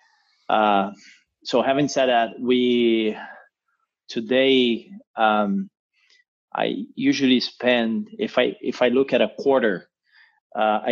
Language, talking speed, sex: English, 110 wpm, male